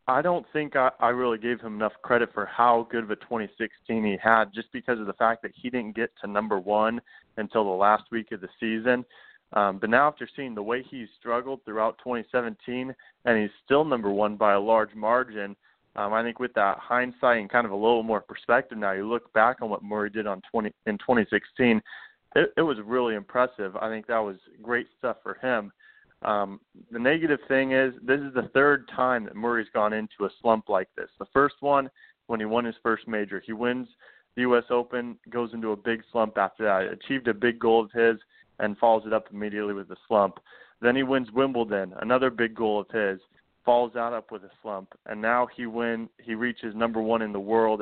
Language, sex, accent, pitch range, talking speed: English, male, American, 110-125 Hz, 220 wpm